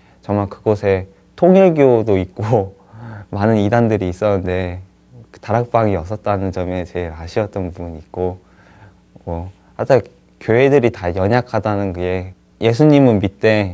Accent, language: native, Korean